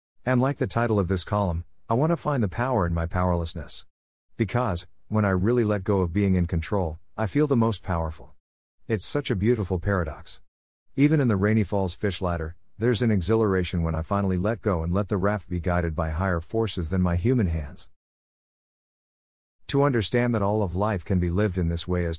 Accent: American